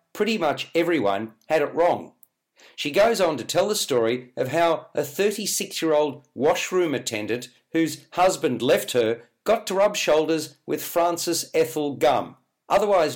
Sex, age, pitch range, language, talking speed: male, 50-69, 145-185 Hz, English, 145 wpm